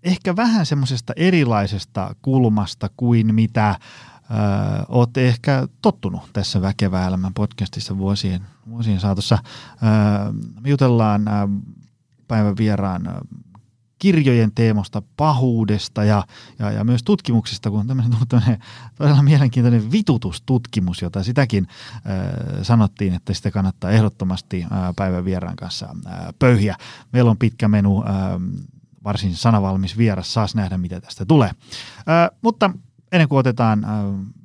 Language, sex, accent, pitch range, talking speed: Finnish, male, native, 100-130 Hz, 115 wpm